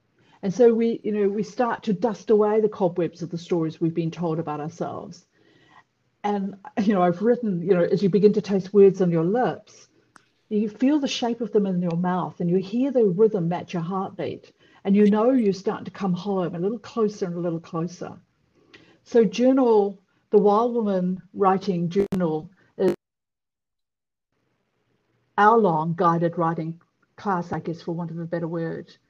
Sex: female